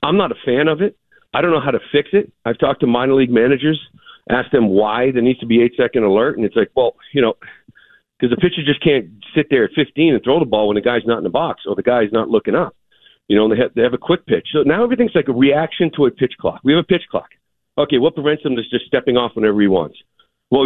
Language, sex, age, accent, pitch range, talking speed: English, male, 50-69, American, 125-170 Hz, 280 wpm